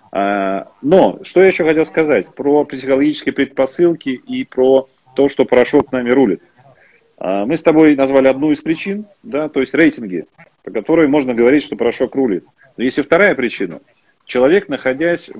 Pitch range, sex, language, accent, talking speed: 125-155 Hz, male, Russian, native, 165 wpm